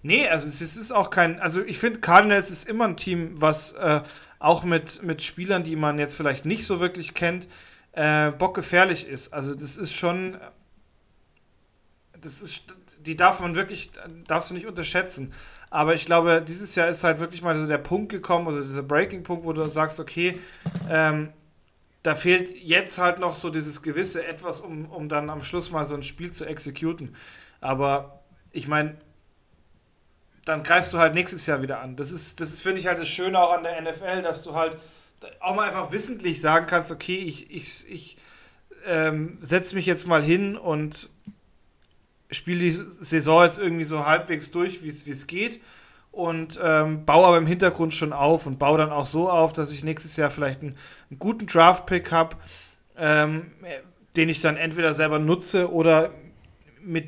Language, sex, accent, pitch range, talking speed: German, male, German, 150-180 Hz, 185 wpm